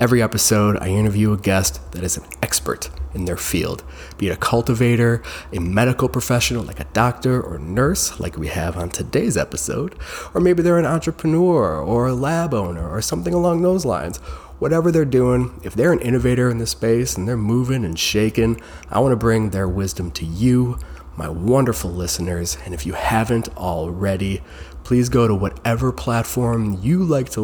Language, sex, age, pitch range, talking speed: English, male, 20-39, 85-125 Hz, 185 wpm